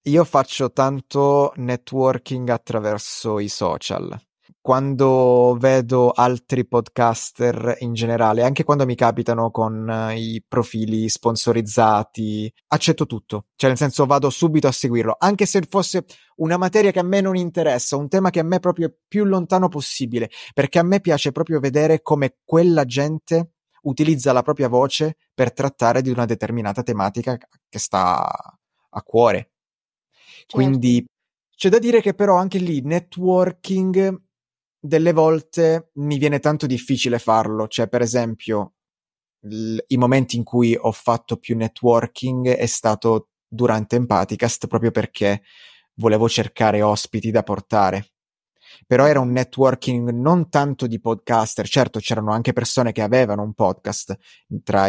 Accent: native